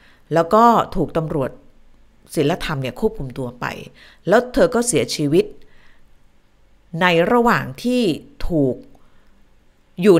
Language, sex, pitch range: Thai, female, 140-200 Hz